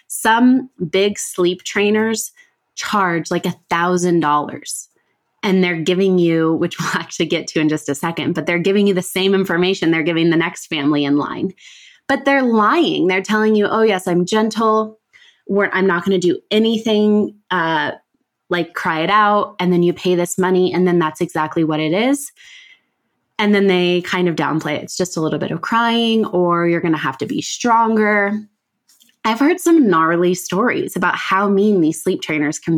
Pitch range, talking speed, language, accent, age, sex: 165-215 Hz, 190 wpm, English, American, 20-39, female